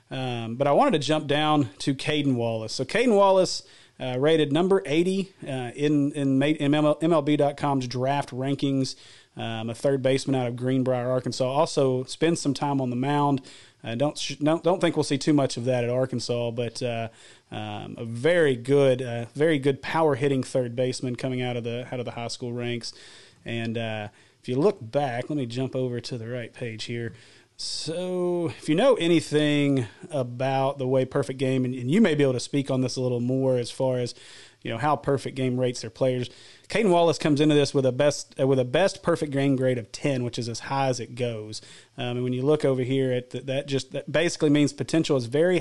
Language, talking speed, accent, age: English, 215 wpm, American, 40-59